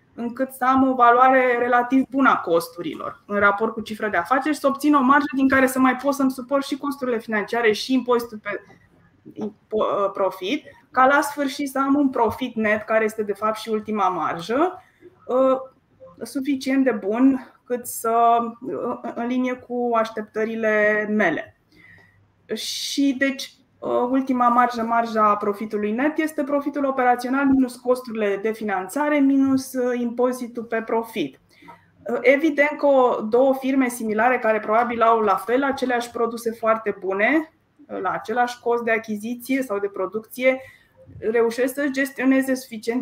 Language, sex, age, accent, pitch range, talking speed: Romanian, female, 20-39, native, 220-265 Hz, 145 wpm